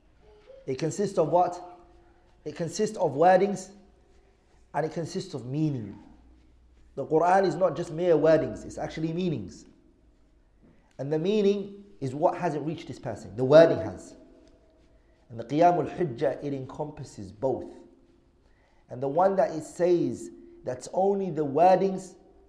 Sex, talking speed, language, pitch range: male, 140 wpm, English, 145-185 Hz